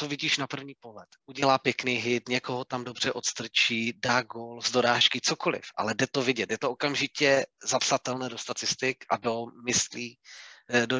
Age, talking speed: 30-49, 165 wpm